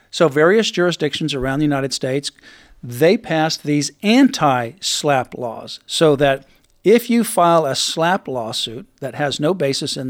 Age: 50-69